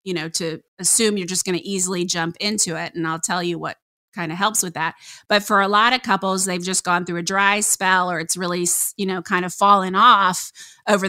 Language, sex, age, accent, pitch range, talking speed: English, female, 30-49, American, 175-210 Hz, 245 wpm